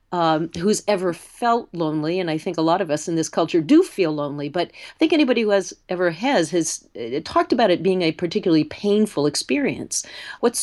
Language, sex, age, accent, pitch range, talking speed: English, female, 40-59, American, 160-225 Hz, 210 wpm